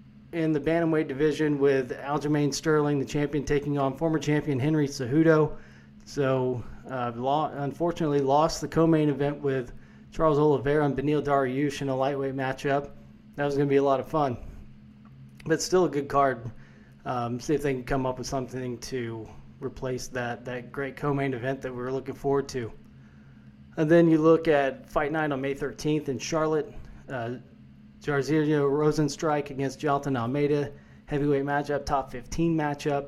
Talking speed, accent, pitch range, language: 165 wpm, American, 125-145 Hz, English